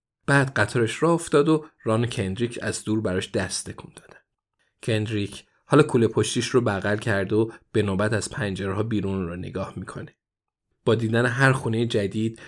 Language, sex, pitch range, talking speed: Persian, male, 105-135 Hz, 170 wpm